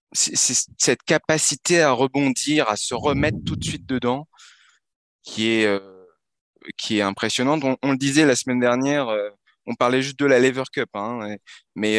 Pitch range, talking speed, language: 110-140 Hz, 175 wpm, French